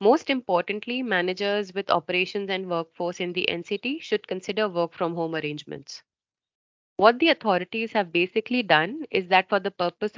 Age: 30-49